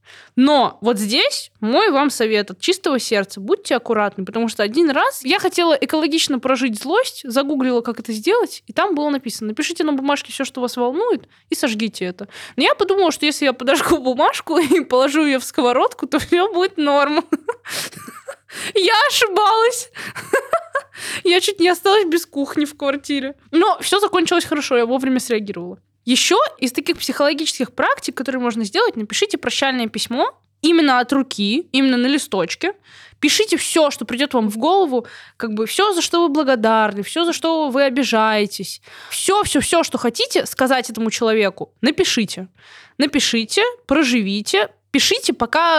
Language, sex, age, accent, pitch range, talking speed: Russian, female, 20-39, native, 235-335 Hz, 160 wpm